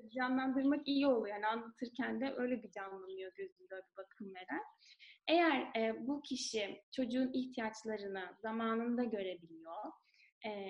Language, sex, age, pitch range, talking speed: Turkish, female, 10-29, 210-275 Hz, 125 wpm